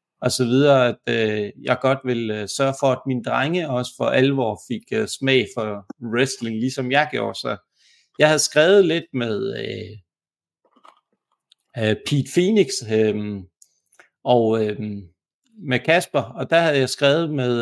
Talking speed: 155 wpm